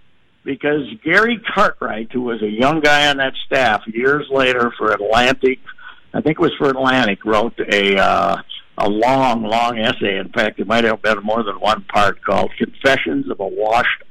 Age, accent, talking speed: 60-79, American, 185 wpm